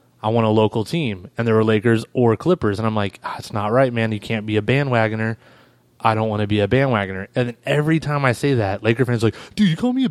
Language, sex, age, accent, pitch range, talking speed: English, male, 20-39, American, 115-140 Hz, 280 wpm